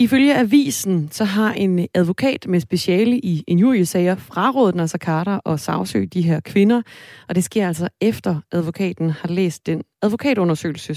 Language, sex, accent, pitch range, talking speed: Danish, female, native, 165-200 Hz, 160 wpm